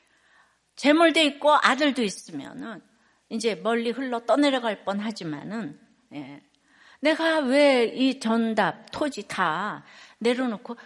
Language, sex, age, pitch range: Korean, female, 60-79, 225-295 Hz